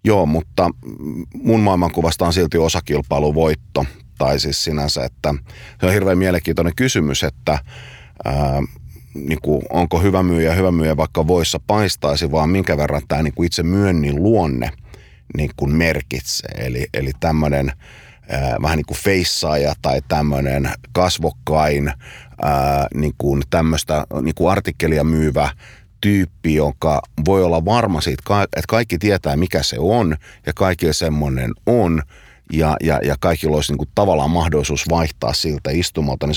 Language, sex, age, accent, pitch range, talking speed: Finnish, male, 30-49, native, 75-90 Hz, 140 wpm